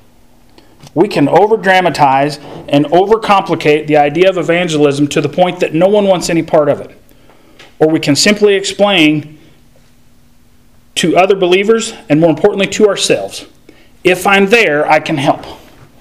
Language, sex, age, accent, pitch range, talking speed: English, male, 40-59, American, 145-185 Hz, 155 wpm